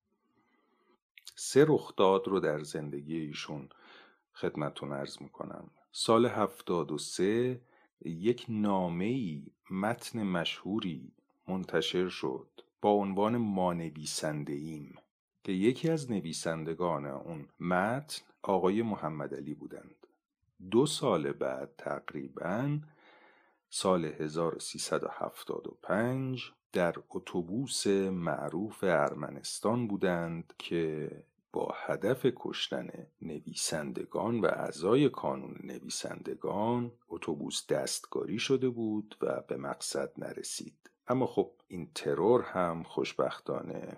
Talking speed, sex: 85 wpm, male